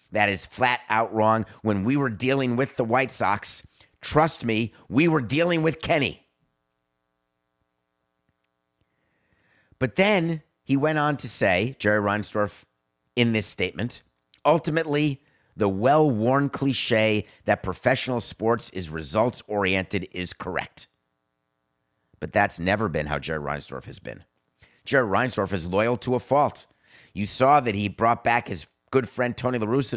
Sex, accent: male, American